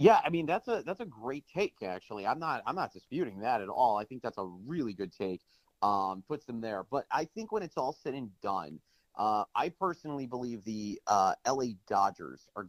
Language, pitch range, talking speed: English, 105-125 Hz, 220 wpm